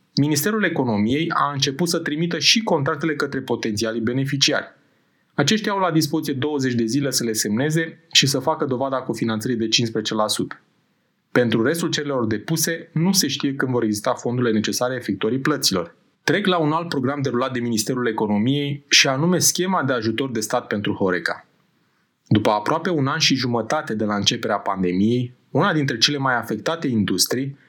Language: Romanian